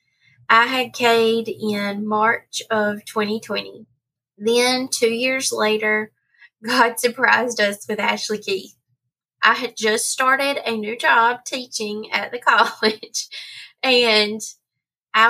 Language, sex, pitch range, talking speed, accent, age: English, female, 210-235 Hz, 120 wpm, American, 20-39